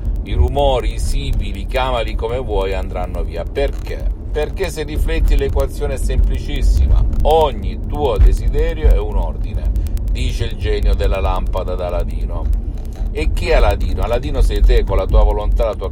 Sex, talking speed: male, 160 wpm